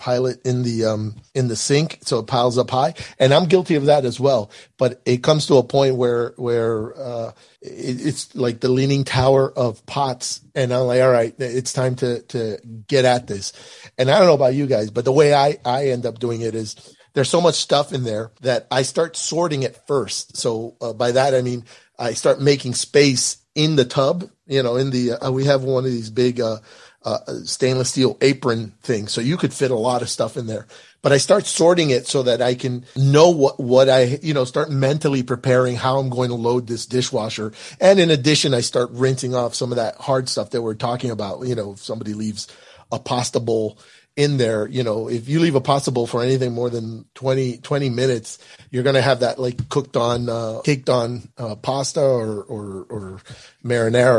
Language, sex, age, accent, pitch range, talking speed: English, male, 40-59, American, 120-140 Hz, 220 wpm